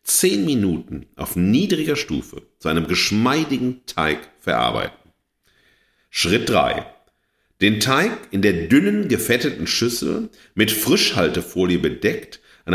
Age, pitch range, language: 50-69, 80-105 Hz, German